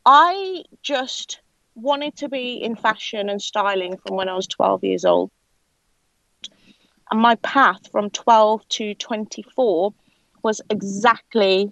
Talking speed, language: 130 wpm, English